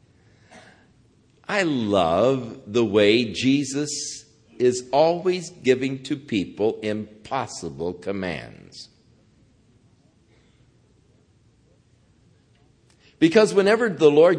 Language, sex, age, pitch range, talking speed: English, male, 60-79, 120-200 Hz, 65 wpm